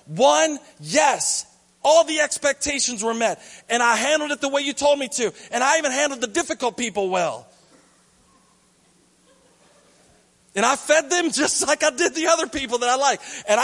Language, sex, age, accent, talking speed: English, male, 40-59, American, 175 wpm